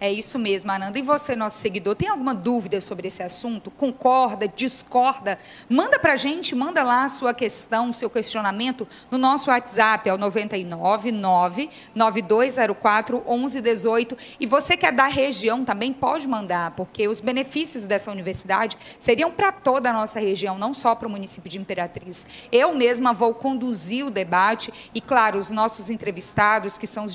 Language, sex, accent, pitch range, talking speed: Portuguese, female, Brazilian, 210-255 Hz, 160 wpm